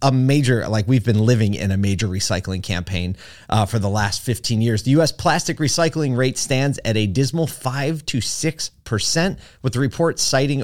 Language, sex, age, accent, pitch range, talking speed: English, male, 30-49, American, 110-150 Hz, 190 wpm